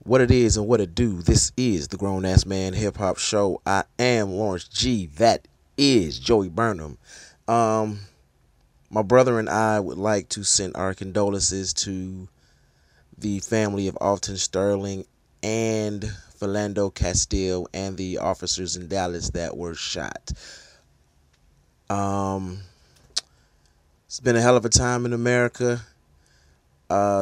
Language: English